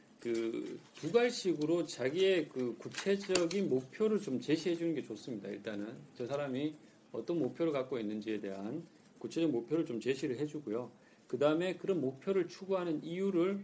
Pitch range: 130-195 Hz